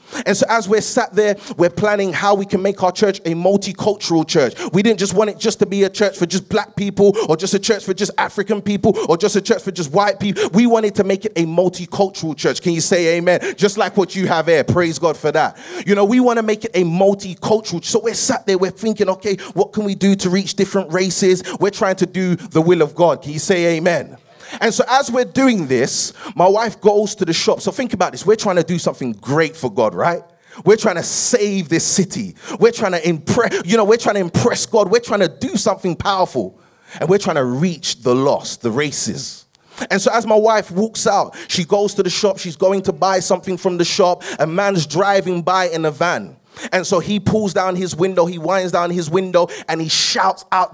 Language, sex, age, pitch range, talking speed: English, male, 30-49, 175-210 Hz, 240 wpm